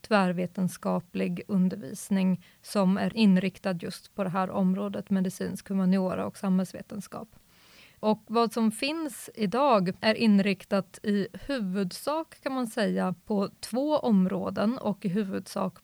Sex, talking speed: female, 120 wpm